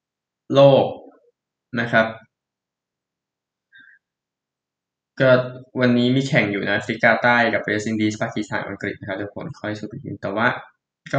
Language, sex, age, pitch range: Thai, male, 20-39, 110-135 Hz